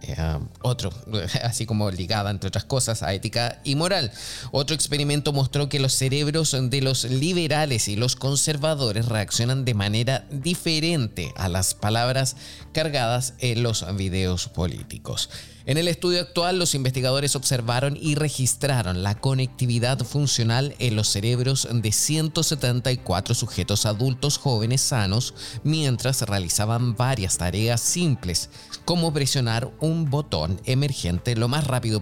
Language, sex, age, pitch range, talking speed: Spanish, male, 20-39, 115-150 Hz, 130 wpm